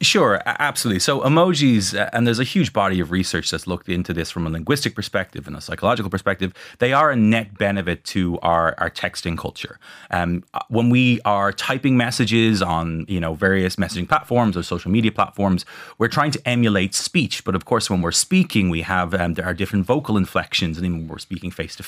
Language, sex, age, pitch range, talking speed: English, male, 30-49, 90-120 Hz, 210 wpm